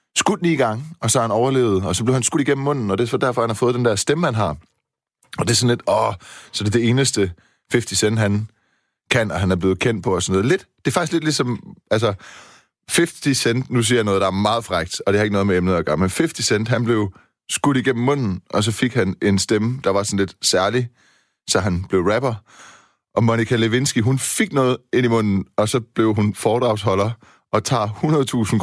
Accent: native